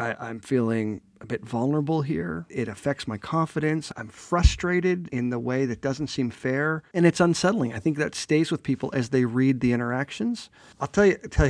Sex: male